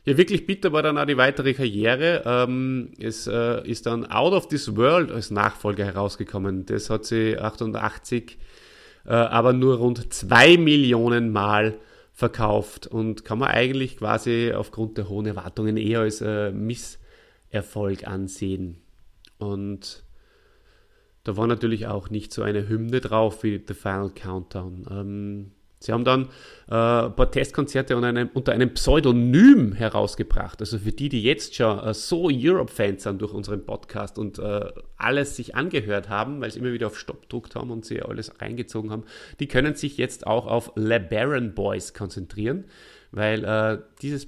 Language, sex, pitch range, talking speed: German, male, 105-120 Hz, 155 wpm